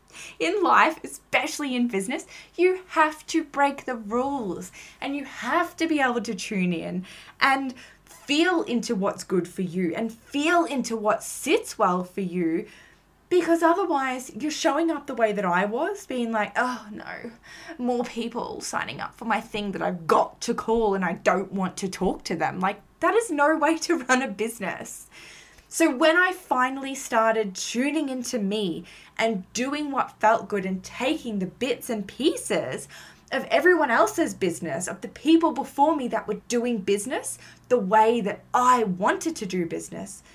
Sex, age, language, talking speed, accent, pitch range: female, 10-29, English, 175 wpm, Australian, 195-285 Hz